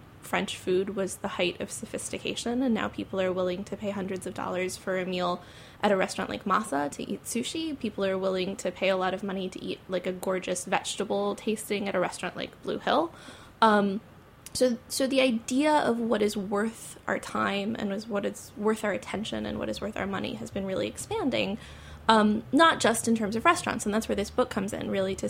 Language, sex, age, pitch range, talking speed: English, female, 20-39, 185-225 Hz, 225 wpm